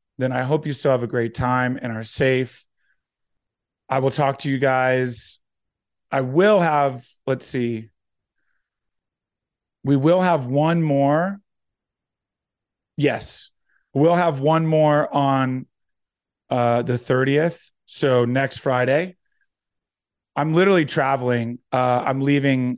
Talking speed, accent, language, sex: 120 wpm, American, English, male